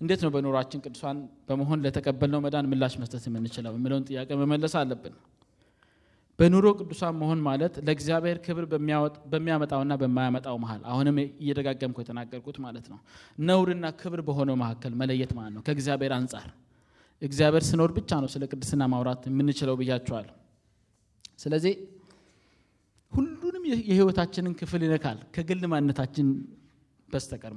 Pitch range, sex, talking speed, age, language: 130-165 Hz, male, 85 wpm, 20-39, Amharic